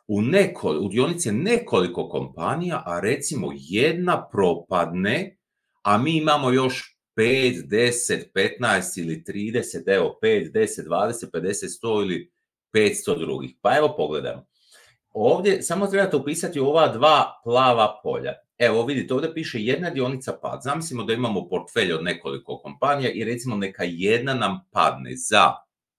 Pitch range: 120-195 Hz